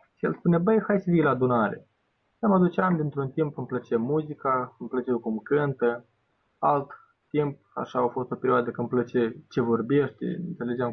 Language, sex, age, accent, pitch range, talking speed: Romanian, male, 20-39, native, 115-130 Hz, 185 wpm